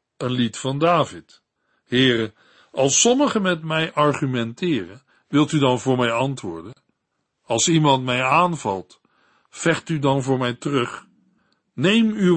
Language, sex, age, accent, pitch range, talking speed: Dutch, male, 50-69, Dutch, 125-175 Hz, 135 wpm